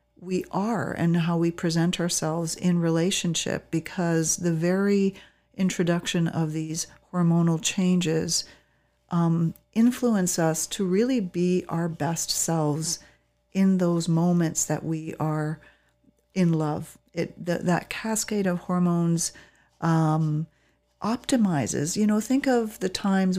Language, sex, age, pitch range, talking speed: English, female, 40-59, 160-180 Hz, 125 wpm